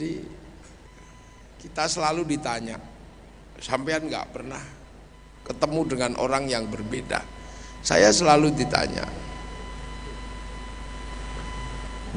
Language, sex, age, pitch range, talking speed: English, male, 50-69, 90-140 Hz, 75 wpm